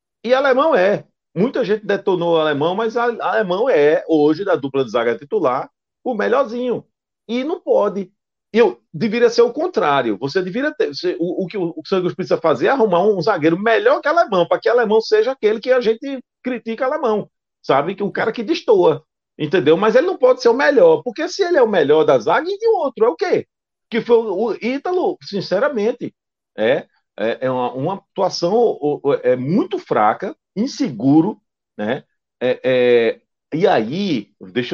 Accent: Brazilian